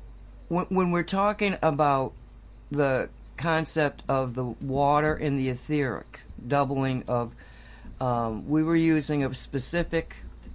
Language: English